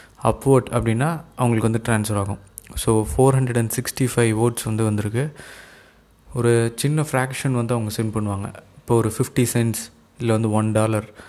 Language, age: Tamil, 20-39